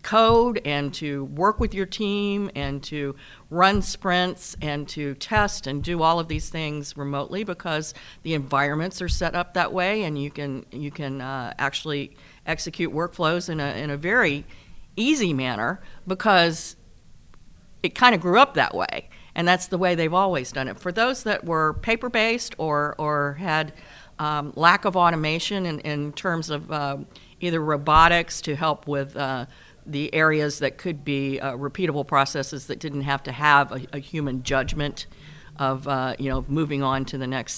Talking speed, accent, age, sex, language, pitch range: 175 wpm, American, 50-69, female, English, 140-180 Hz